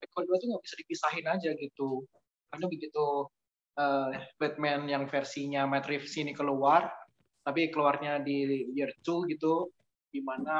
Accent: native